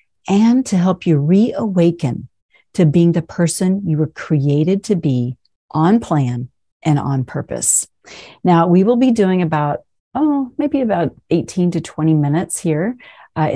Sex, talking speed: female, 150 wpm